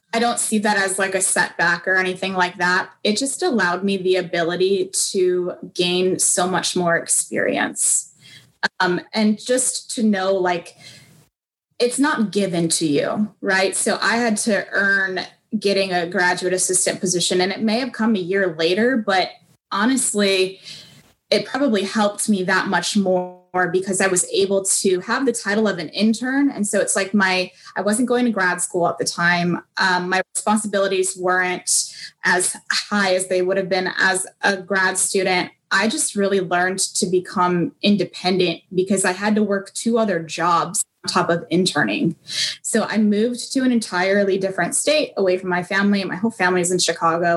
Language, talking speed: English, 175 wpm